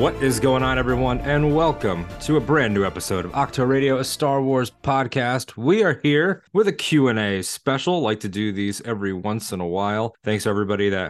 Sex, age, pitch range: male, 20-39, 90-115 Hz